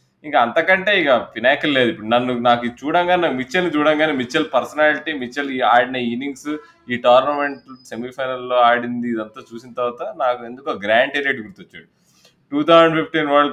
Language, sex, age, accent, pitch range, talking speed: Telugu, male, 20-39, native, 120-160 Hz, 150 wpm